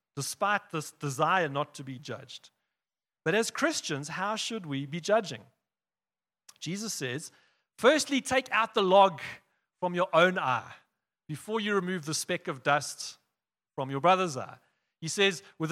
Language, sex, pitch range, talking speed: English, male, 155-225 Hz, 155 wpm